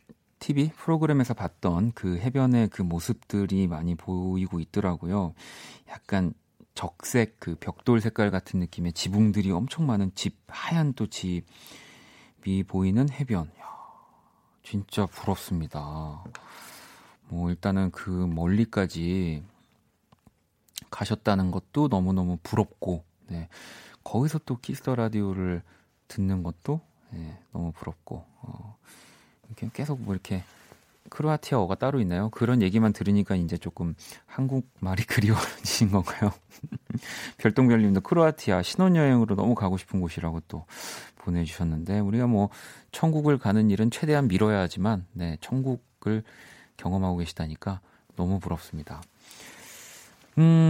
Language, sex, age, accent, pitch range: Korean, male, 40-59, native, 90-120 Hz